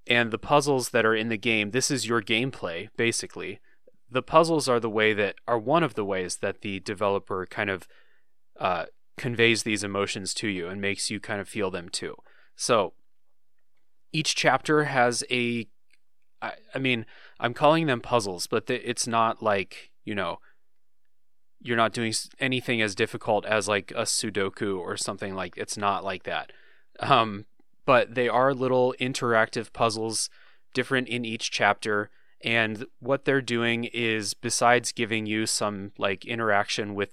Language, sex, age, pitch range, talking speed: English, male, 20-39, 105-125 Hz, 165 wpm